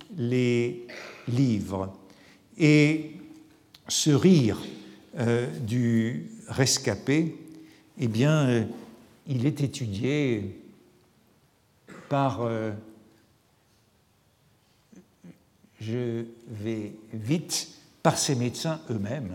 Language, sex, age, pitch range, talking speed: French, male, 60-79, 115-150 Hz, 70 wpm